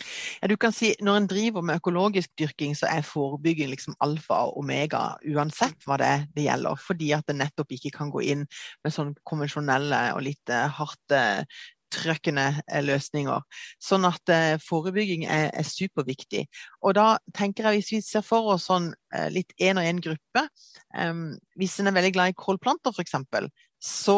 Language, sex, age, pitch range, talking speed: English, female, 30-49, 155-195 Hz, 175 wpm